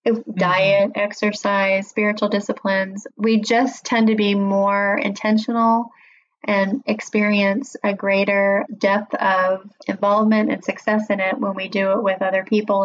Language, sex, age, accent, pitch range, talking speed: English, female, 30-49, American, 200-230 Hz, 135 wpm